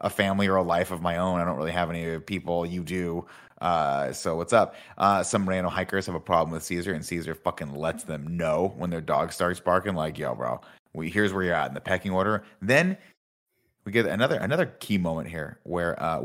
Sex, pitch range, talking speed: male, 80-100 Hz, 230 wpm